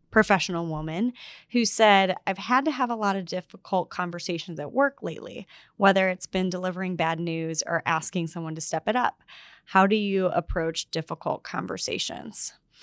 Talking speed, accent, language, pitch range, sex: 165 wpm, American, English, 165-200 Hz, female